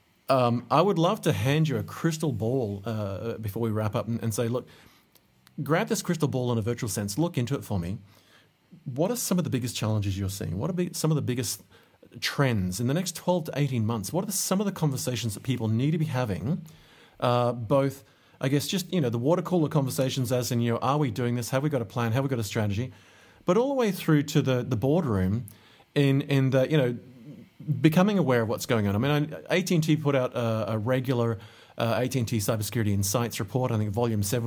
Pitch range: 110-140 Hz